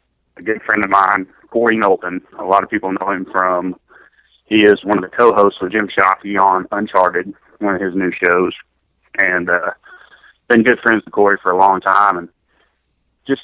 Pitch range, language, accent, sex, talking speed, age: 95-115 Hz, English, American, male, 195 wpm, 30-49